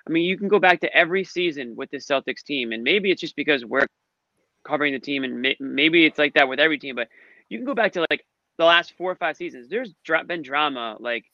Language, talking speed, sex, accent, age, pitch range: English, 250 wpm, male, American, 20-39, 130-160 Hz